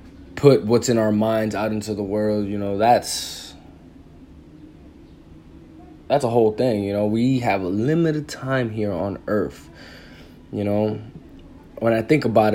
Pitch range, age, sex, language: 100-125 Hz, 20-39, male, English